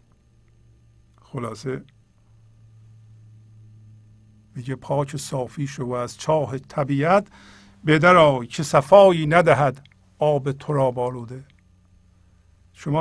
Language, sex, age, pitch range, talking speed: Persian, male, 50-69, 90-140 Hz, 80 wpm